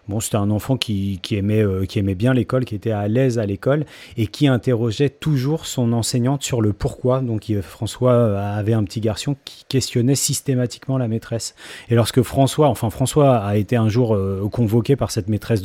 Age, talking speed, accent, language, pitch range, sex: 30-49, 190 wpm, French, French, 110-140 Hz, male